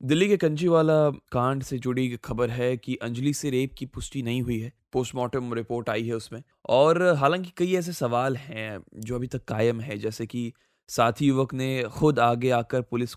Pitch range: 120-150 Hz